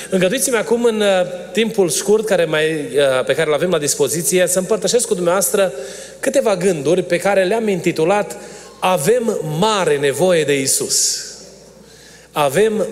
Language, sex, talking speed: Romanian, male, 135 wpm